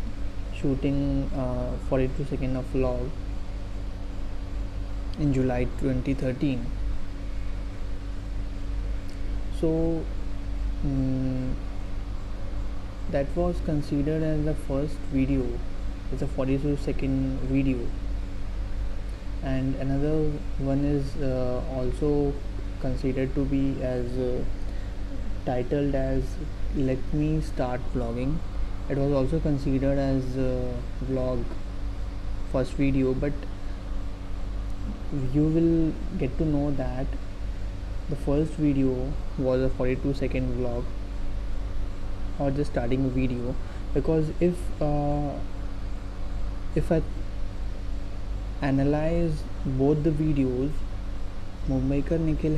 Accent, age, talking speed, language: Indian, 20-39, 90 wpm, English